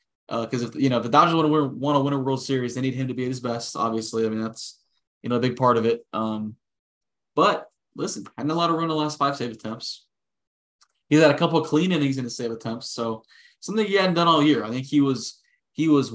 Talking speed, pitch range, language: 270 wpm, 120-150 Hz, English